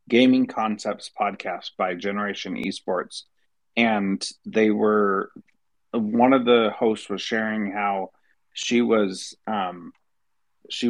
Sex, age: male, 30-49